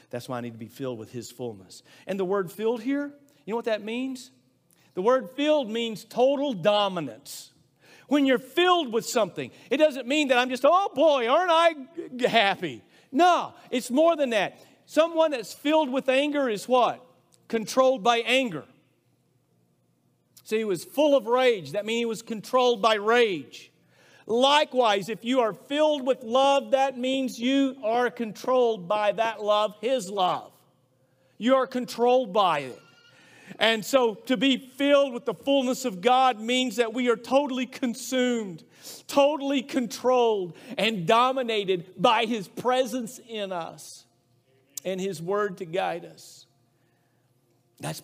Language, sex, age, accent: English, male, 50-69, American